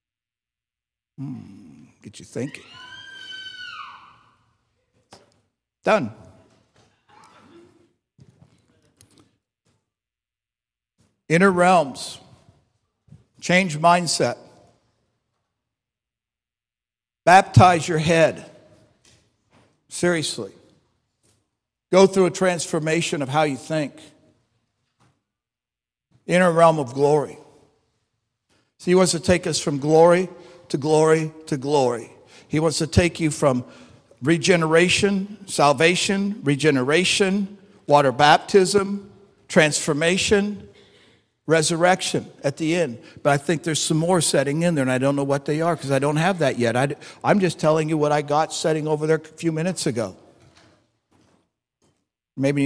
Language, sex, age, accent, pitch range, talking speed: English, male, 60-79, American, 130-175 Hz, 100 wpm